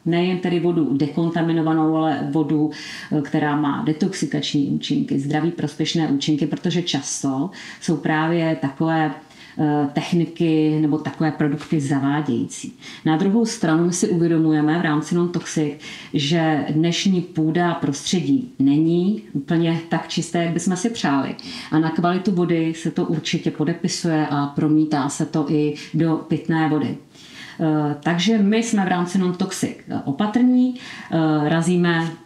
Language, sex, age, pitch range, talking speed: Czech, female, 40-59, 155-175 Hz, 125 wpm